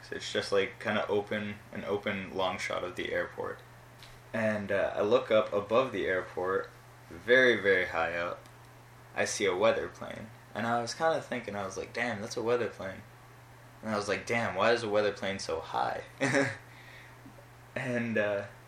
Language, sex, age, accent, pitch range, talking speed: English, male, 20-39, American, 100-125 Hz, 185 wpm